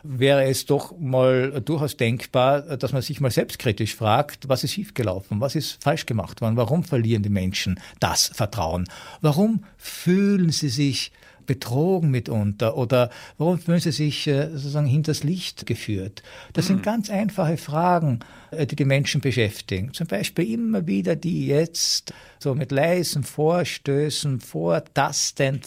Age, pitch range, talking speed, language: 60-79, 115-150 Hz, 145 wpm, German